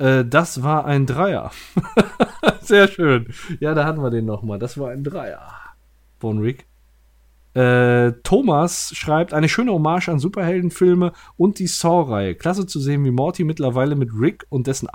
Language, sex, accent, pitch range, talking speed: German, male, German, 125-170 Hz, 155 wpm